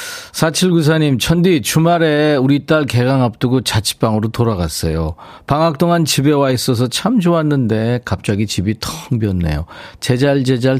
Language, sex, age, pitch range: Korean, male, 40-59, 105-145 Hz